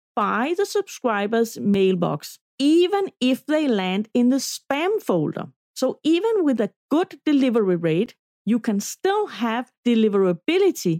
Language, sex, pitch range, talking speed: English, female, 205-270 Hz, 130 wpm